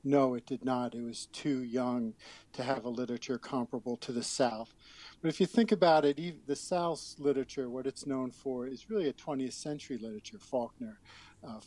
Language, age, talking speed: English, 50-69, 190 wpm